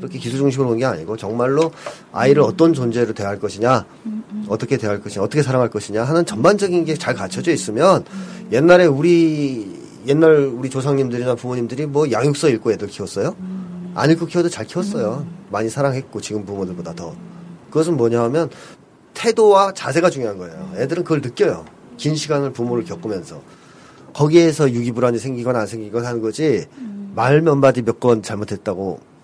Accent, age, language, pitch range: native, 40-59, Korean, 115-165 Hz